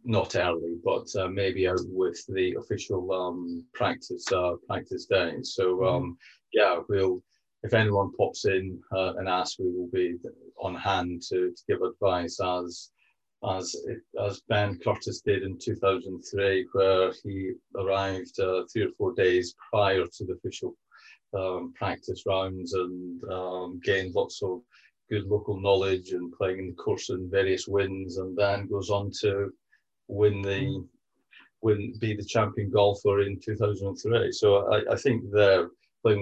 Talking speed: 155 wpm